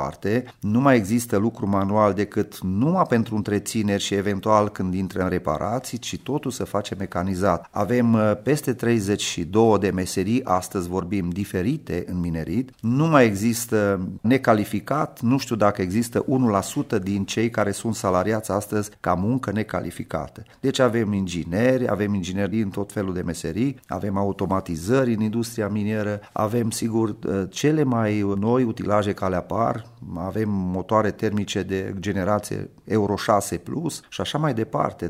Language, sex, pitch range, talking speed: English, male, 95-115 Hz, 145 wpm